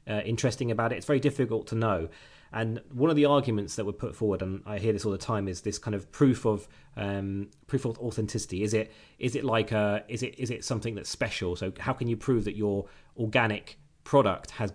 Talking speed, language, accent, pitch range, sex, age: 235 wpm, English, British, 105-130 Hz, male, 30-49